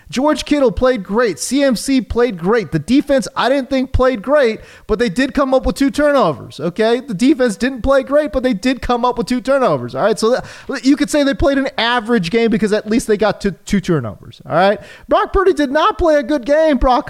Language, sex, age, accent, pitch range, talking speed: English, male, 30-49, American, 220-310 Hz, 230 wpm